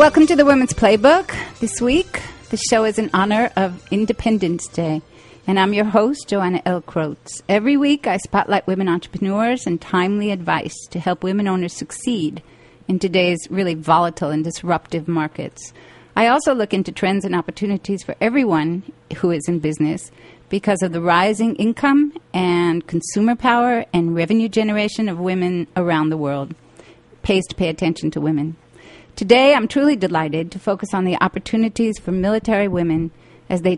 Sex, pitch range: female, 170-215 Hz